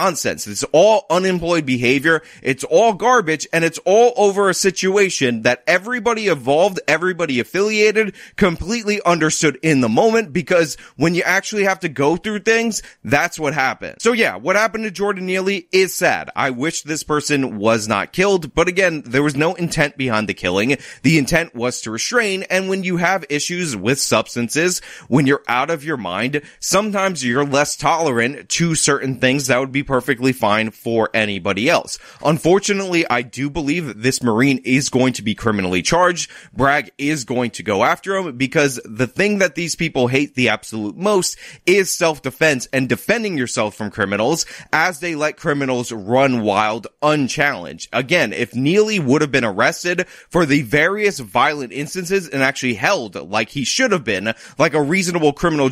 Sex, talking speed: male, 175 wpm